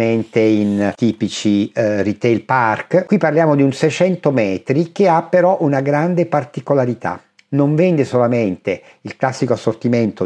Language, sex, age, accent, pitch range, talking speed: Italian, male, 50-69, native, 110-145 Hz, 130 wpm